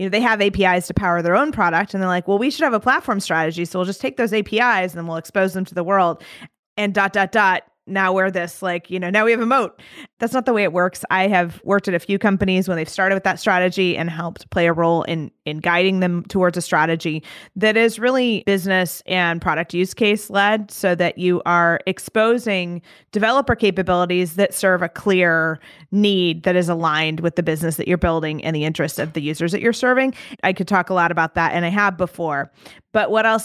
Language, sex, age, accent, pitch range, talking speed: English, female, 20-39, American, 170-210 Hz, 240 wpm